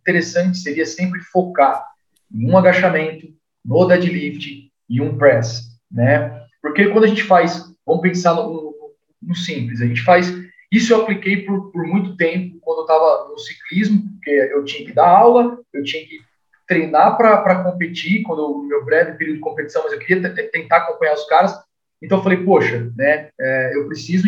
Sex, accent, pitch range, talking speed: male, Brazilian, 155-200 Hz, 190 wpm